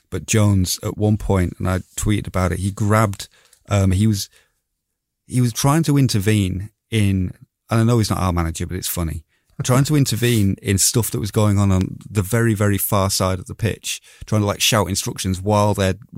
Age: 30-49